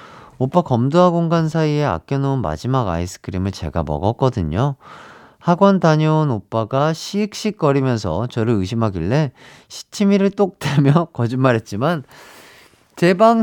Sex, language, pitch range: male, Korean, 105-160 Hz